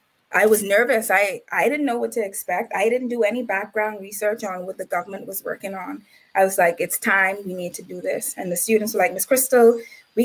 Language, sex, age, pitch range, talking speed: English, female, 20-39, 185-225 Hz, 240 wpm